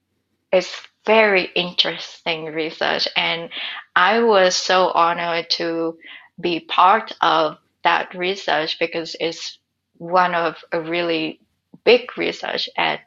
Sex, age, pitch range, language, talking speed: female, 20-39, 165-185 Hz, English, 110 wpm